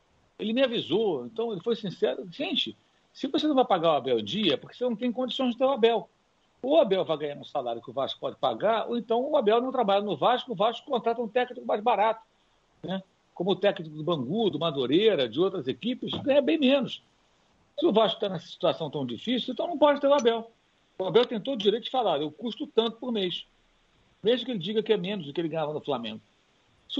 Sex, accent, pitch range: male, Brazilian, 160-240 Hz